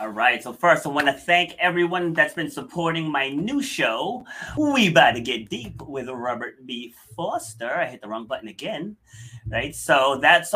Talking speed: 190 wpm